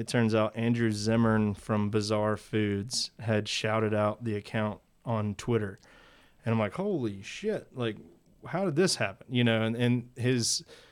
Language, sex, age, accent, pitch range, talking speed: English, male, 30-49, American, 110-135 Hz, 165 wpm